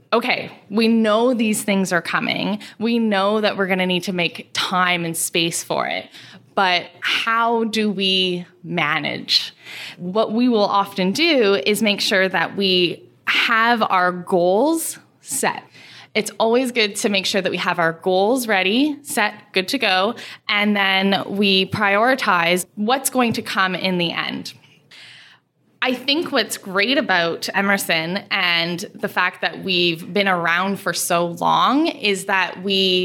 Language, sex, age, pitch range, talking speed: English, female, 10-29, 180-225 Hz, 155 wpm